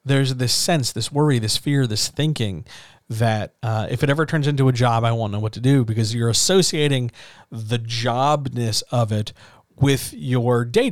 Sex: male